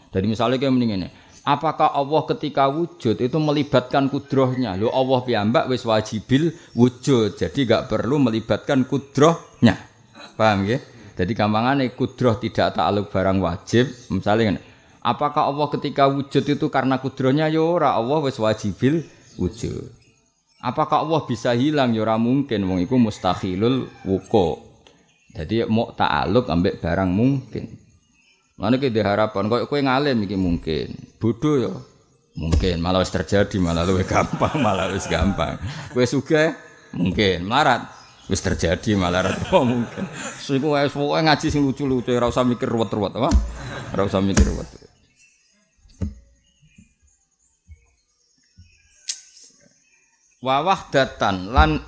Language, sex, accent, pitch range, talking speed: Indonesian, male, native, 95-140 Hz, 105 wpm